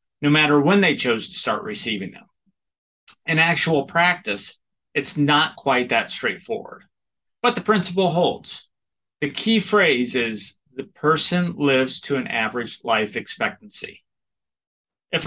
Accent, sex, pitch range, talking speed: American, male, 135-185 Hz, 135 wpm